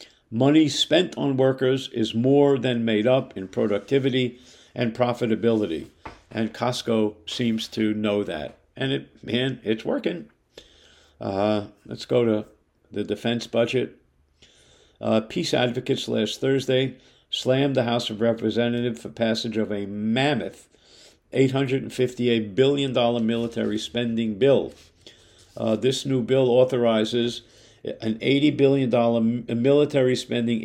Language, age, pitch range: English, 50-69, 110-130 Hz